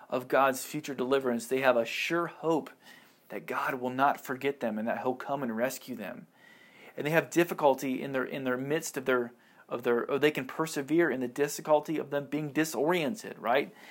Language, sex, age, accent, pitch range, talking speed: English, male, 40-59, American, 125-155 Hz, 205 wpm